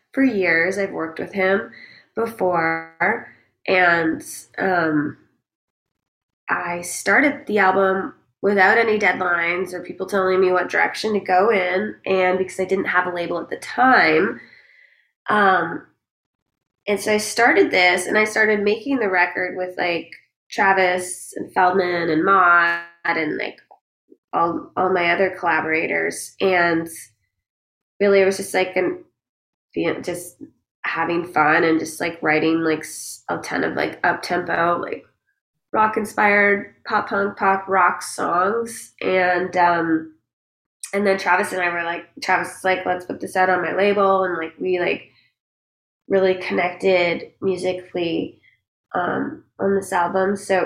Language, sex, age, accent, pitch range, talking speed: English, female, 20-39, American, 170-195 Hz, 140 wpm